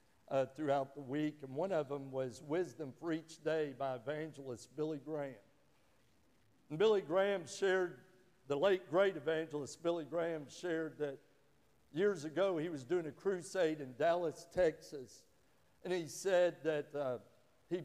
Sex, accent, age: male, American, 60-79